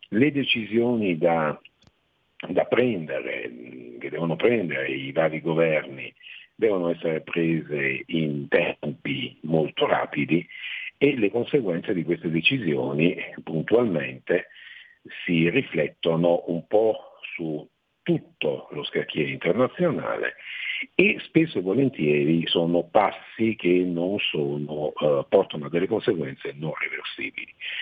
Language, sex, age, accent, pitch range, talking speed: Italian, male, 50-69, native, 80-95 Hz, 110 wpm